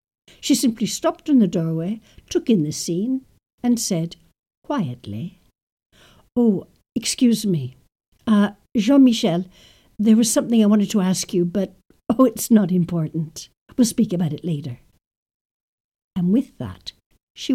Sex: female